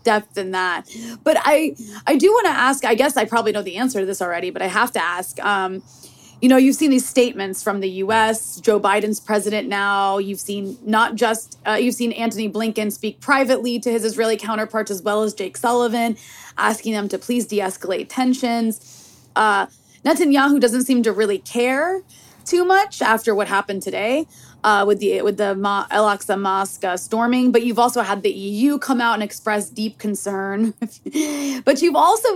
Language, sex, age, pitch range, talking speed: English, female, 20-39, 205-255 Hz, 190 wpm